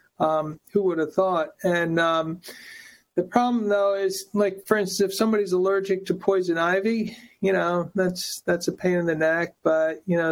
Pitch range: 165-195 Hz